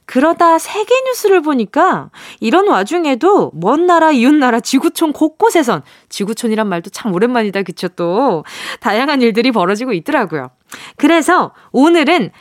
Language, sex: Korean, female